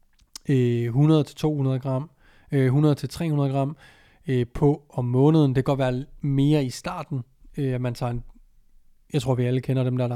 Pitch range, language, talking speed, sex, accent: 125-145 Hz, Danish, 140 wpm, male, native